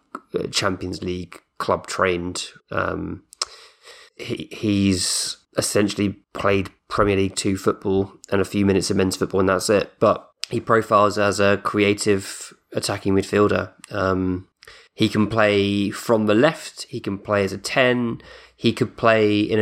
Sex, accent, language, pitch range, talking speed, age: male, British, English, 95-115 Hz, 145 wpm, 20-39